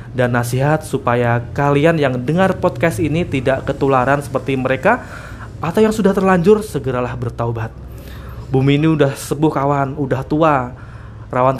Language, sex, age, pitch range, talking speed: Indonesian, male, 20-39, 125-175 Hz, 135 wpm